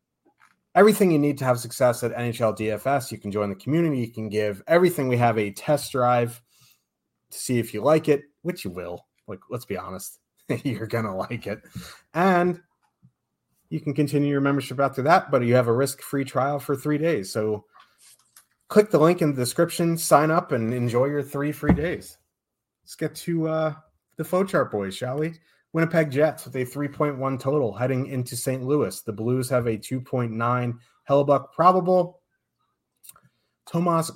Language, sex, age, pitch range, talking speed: English, male, 30-49, 115-150 Hz, 175 wpm